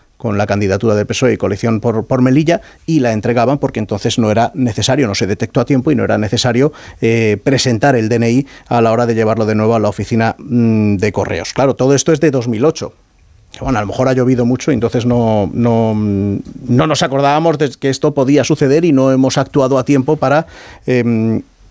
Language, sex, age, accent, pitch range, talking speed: Spanish, male, 40-59, Spanish, 115-140 Hz, 215 wpm